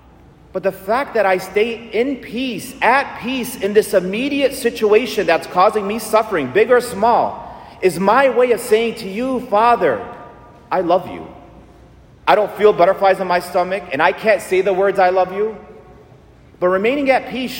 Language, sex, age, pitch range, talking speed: English, male, 40-59, 180-230 Hz, 175 wpm